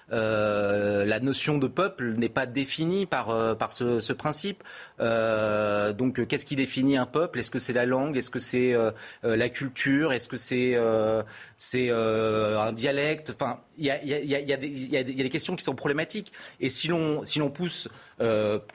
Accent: French